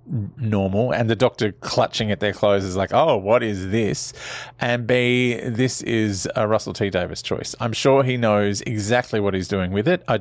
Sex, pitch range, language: male, 105-130 Hz, English